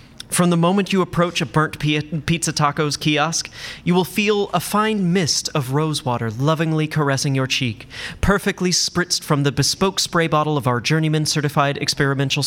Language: English